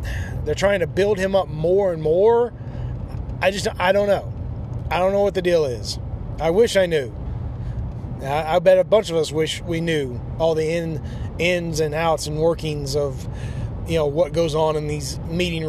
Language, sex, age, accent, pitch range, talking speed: English, male, 30-49, American, 135-185 Hz, 195 wpm